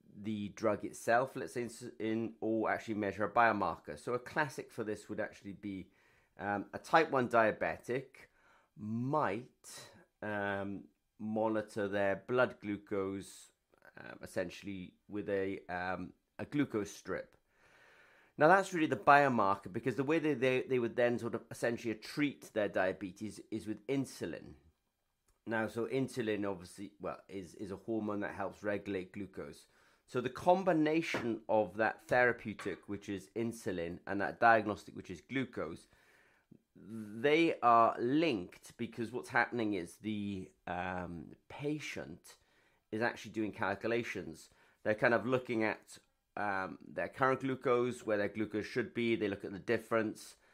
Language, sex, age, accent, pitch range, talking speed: English, male, 30-49, British, 100-120 Hz, 145 wpm